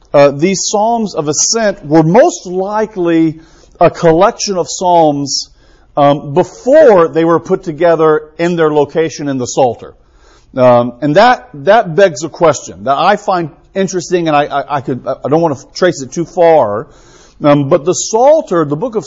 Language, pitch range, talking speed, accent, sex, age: English, 140-175 Hz, 175 wpm, American, male, 50-69